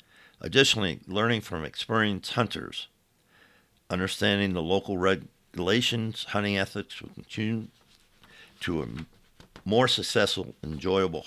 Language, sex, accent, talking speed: English, male, American, 95 wpm